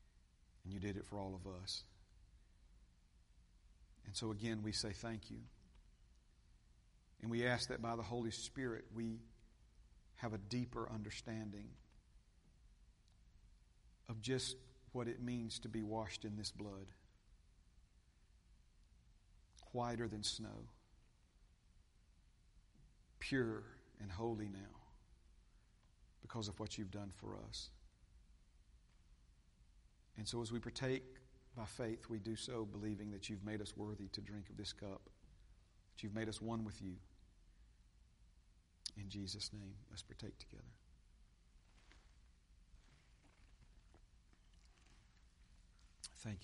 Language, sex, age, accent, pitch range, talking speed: English, male, 50-69, American, 95-115 Hz, 115 wpm